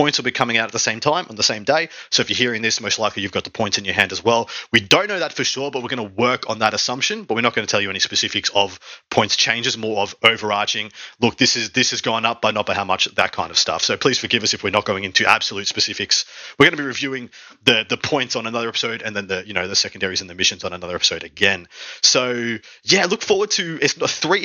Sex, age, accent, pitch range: male, 30-49, Australian, 105-130 Hz